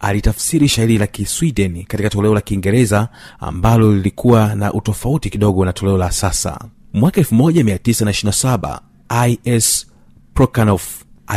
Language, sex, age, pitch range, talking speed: Swahili, male, 40-59, 100-125 Hz, 95 wpm